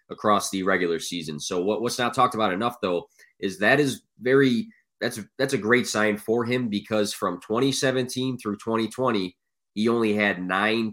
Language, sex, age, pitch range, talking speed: English, male, 20-39, 100-115 Hz, 175 wpm